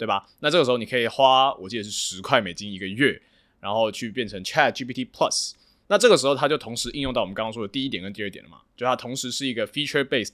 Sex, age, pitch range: male, 20-39, 105-140 Hz